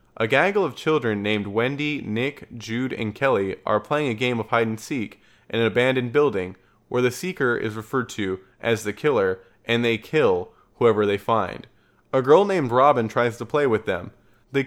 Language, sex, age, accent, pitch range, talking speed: English, male, 20-39, American, 110-145 Hz, 190 wpm